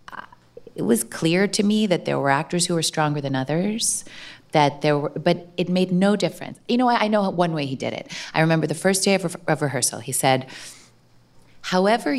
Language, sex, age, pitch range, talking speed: English, female, 30-49, 135-185 Hz, 215 wpm